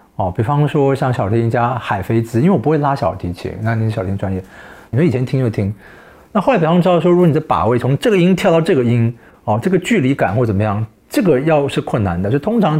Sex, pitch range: male, 110-160 Hz